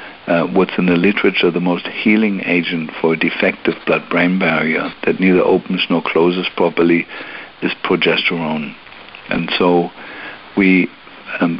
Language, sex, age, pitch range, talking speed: English, male, 60-79, 85-95 Hz, 140 wpm